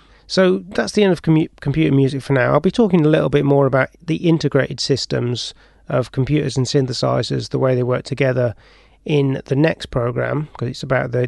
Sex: male